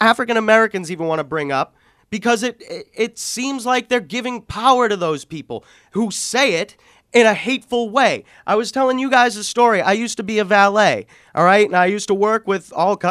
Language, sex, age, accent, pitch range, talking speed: English, male, 30-49, American, 170-220 Hz, 215 wpm